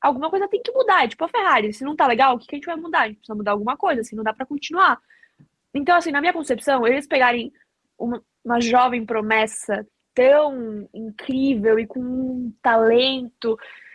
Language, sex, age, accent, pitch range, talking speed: Portuguese, female, 10-29, Brazilian, 215-270 Hz, 200 wpm